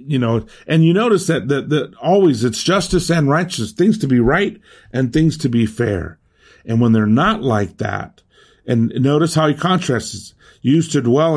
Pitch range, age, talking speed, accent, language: 115-150 Hz, 50-69, 190 wpm, American, English